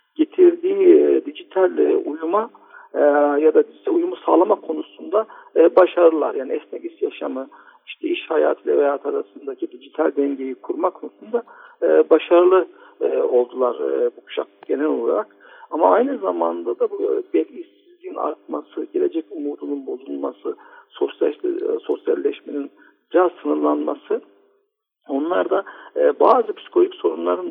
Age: 60-79